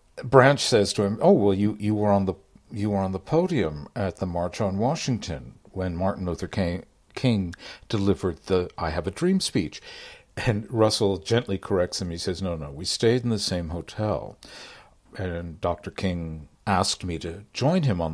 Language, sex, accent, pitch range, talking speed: English, male, American, 90-120 Hz, 190 wpm